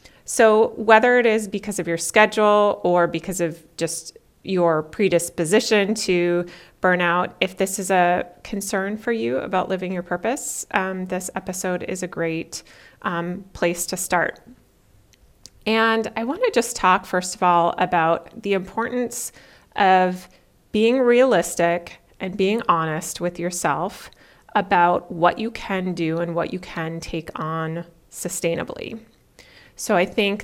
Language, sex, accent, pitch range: English, female, American, 175-220 Hz